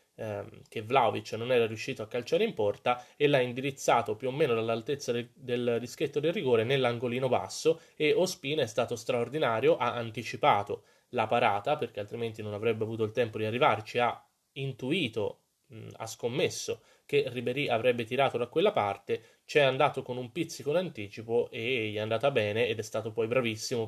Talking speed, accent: 170 wpm, native